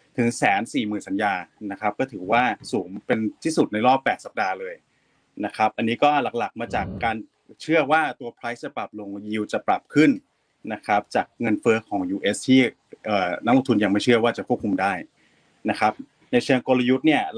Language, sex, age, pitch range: Thai, male, 20-39, 105-130 Hz